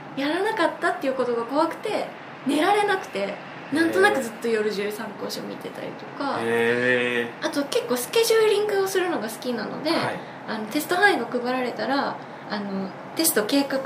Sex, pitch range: female, 215-300 Hz